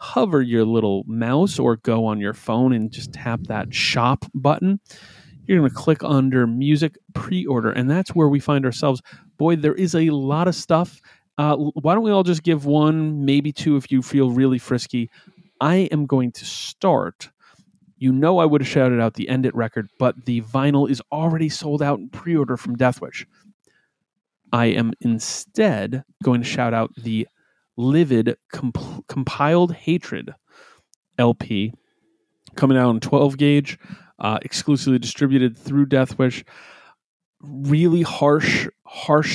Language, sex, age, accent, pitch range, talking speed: English, male, 30-49, American, 120-160 Hz, 155 wpm